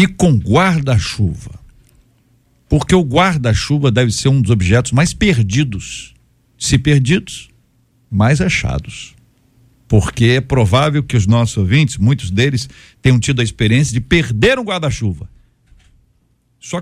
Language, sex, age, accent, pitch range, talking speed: Portuguese, male, 60-79, Brazilian, 115-165 Hz, 130 wpm